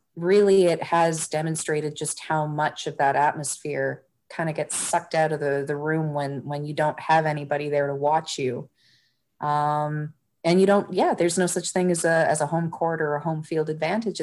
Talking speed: 205 wpm